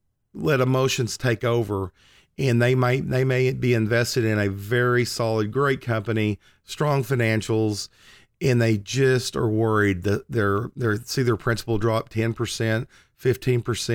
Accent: American